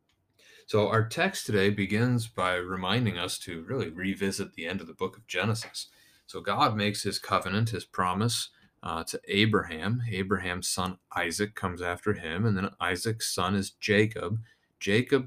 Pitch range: 90-110 Hz